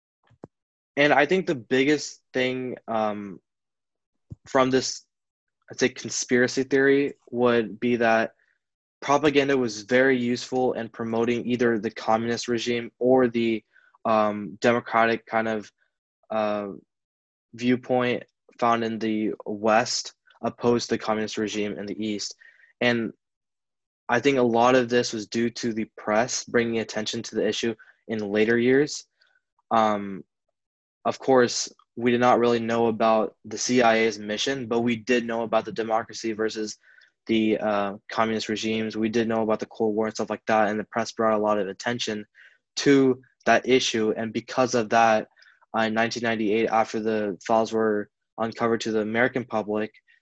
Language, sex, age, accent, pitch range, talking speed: English, male, 20-39, American, 110-120 Hz, 150 wpm